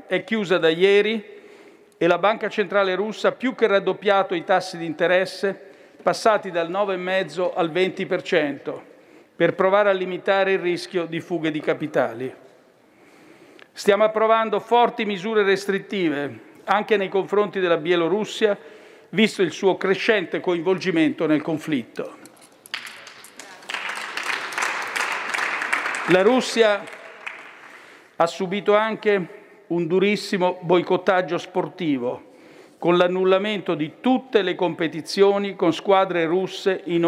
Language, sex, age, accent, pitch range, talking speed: Italian, male, 50-69, native, 175-210 Hz, 110 wpm